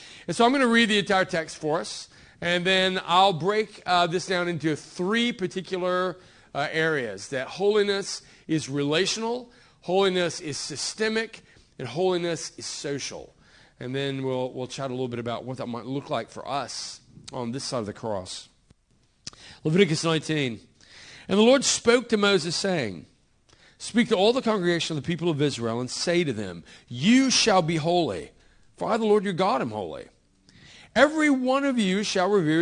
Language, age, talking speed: English, 40-59, 180 wpm